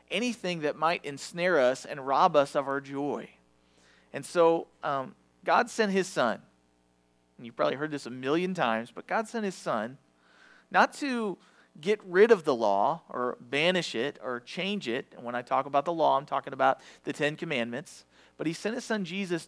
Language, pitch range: English, 120-185 Hz